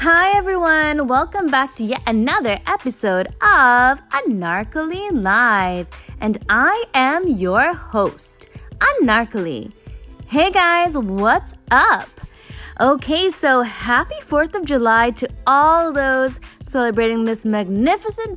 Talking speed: 110 wpm